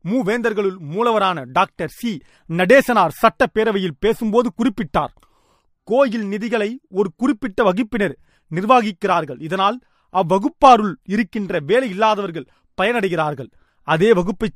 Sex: male